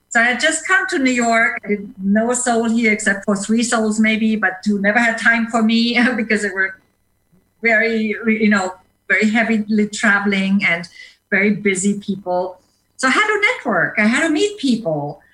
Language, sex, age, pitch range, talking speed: English, female, 50-69, 185-230 Hz, 185 wpm